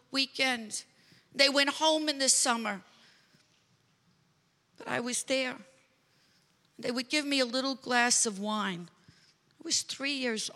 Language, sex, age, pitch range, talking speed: English, female, 50-69, 190-245 Hz, 135 wpm